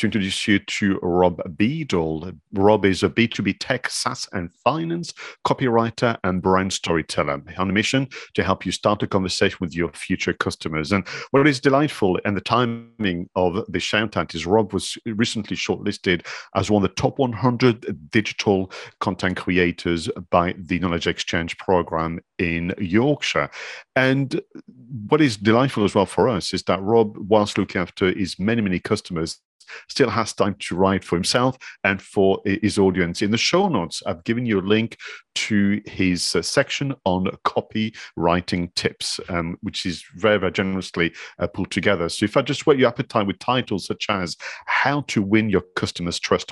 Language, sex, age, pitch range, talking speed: English, male, 50-69, 90-115 Hz, 170 wpm